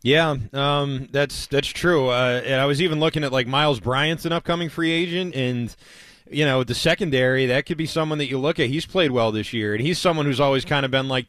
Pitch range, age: 125-155 Hz, 20-39